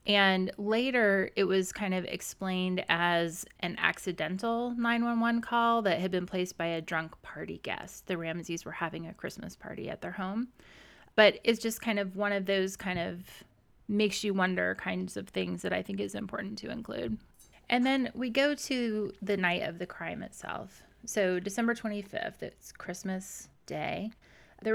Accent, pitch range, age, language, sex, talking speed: American, 180-215 Hz, 20-39, English, female, 175 wpm